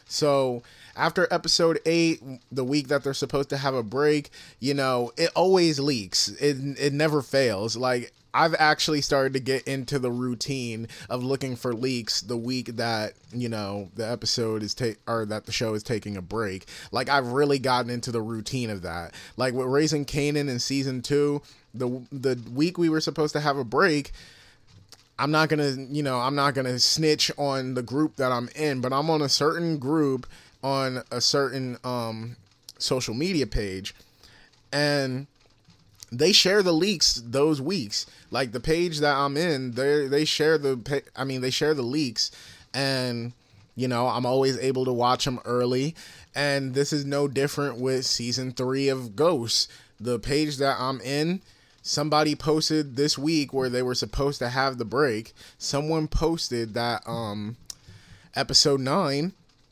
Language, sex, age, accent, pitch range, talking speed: English, male, 30-49, American, 120-145 Hz, 175 wpm